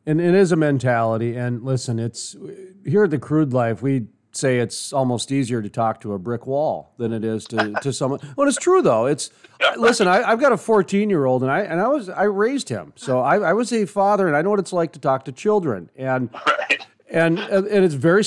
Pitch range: 115-155 Hz